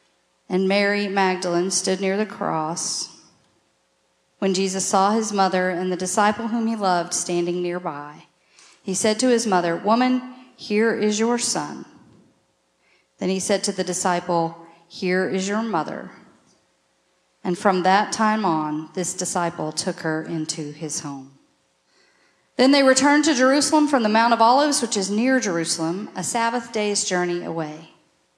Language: English